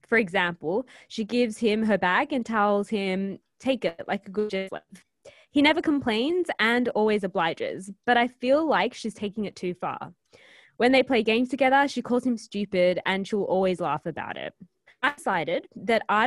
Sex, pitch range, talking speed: female, 190-240 Hz, 185 wpm